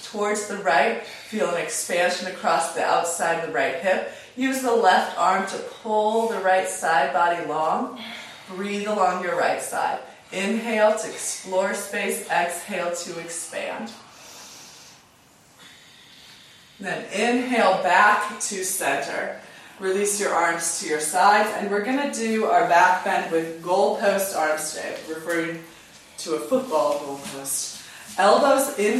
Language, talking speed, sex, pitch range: English, 140 wpm, female, 175-230 Hz